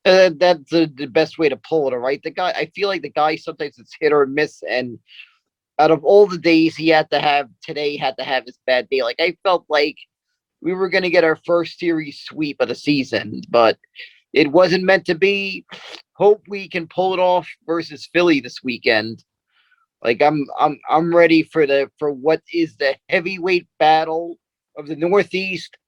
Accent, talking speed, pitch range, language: American, 200 wpm, 155-185 Hz, English